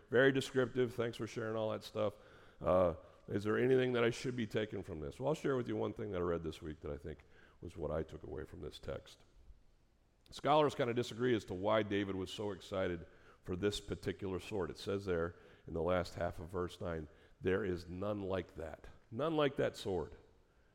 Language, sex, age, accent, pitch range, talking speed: English, male, 50-69, American, 90-120 Hz, 220 wpm